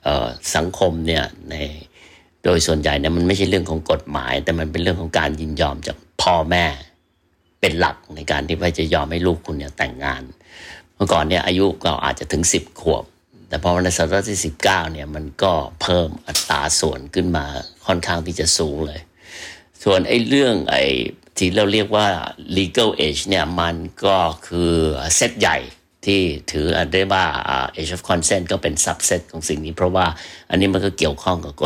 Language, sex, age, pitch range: Thai, male, 60-79, 80-90 Hz